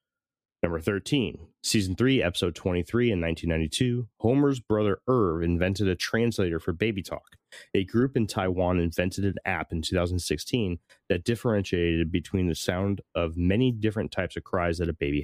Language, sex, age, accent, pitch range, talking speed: English, male, 30-49, American, 85-110 Hz, 160 wpm